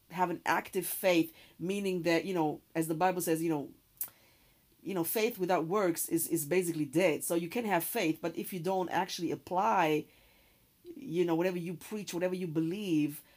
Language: English